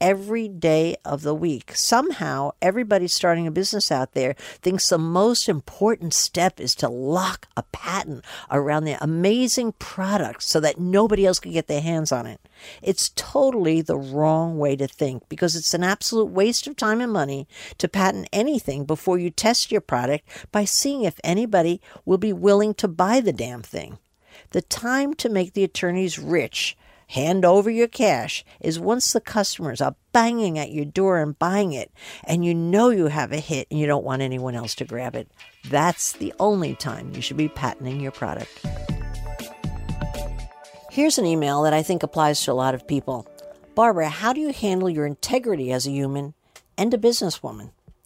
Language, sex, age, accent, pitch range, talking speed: English, female, 50-69, American, 150-210 Hz, 180 wpm